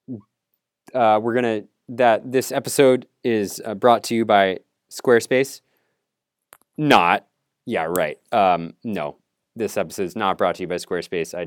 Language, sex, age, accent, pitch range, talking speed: English, male, 20-39, American, 90-115 Hz, 145 wpm